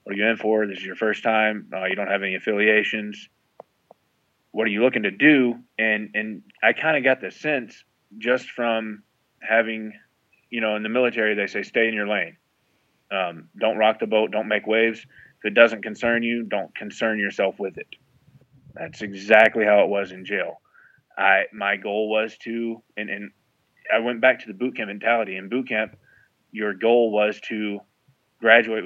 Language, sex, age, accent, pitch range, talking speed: English, male, 20-39, American, 105-115 Hz, 190 wpm